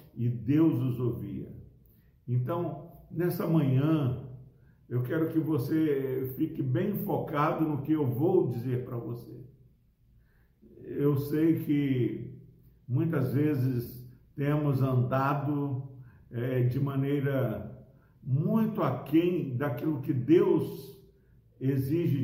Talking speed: 100 wpm